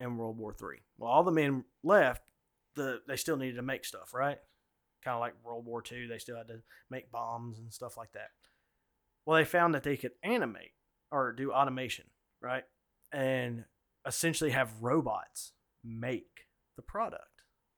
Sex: male